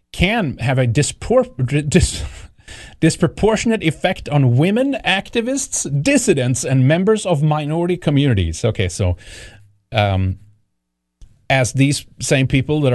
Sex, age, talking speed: male, 30-49, 100 wpm